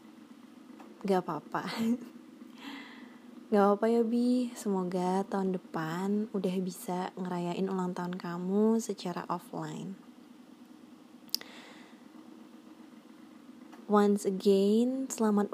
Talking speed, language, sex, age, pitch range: 75 wpm, Indonesian, female, 20-39, 190-255 Hz